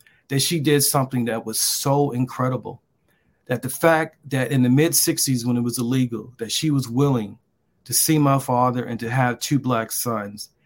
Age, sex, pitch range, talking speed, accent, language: 40-59, male, 125-155 Hz, 190 wpm, American, English